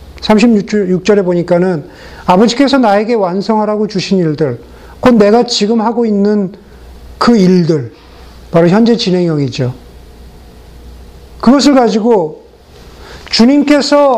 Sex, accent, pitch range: male, native, 145-235 Hz